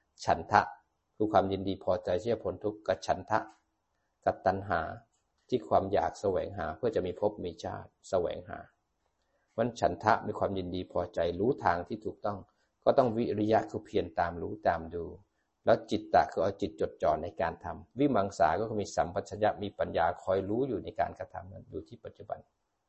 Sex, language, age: male, Thai, 60-79